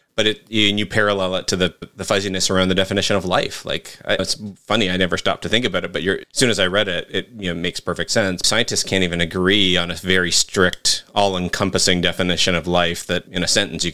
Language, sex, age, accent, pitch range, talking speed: English, male, 30-49, American, 90-110 Hz, 245 wpm